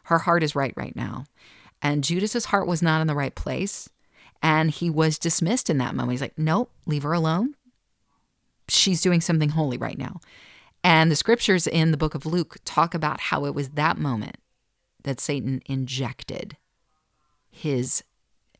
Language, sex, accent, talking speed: English, female, American, 170 wpm